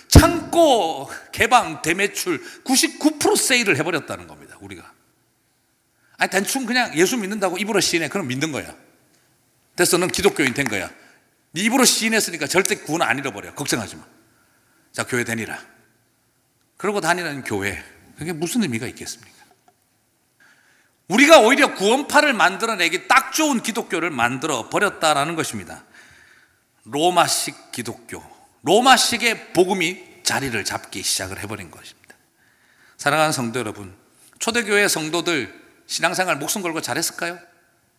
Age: 40-59